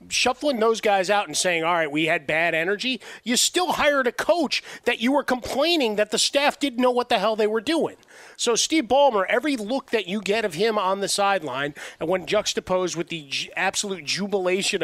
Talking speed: 210 wpm